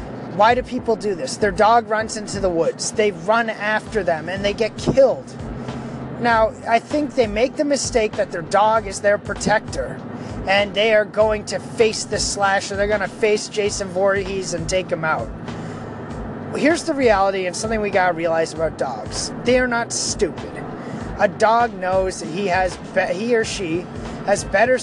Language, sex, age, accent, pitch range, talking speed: English, male, 30-49, American, 200-255 Hz, 175 wpm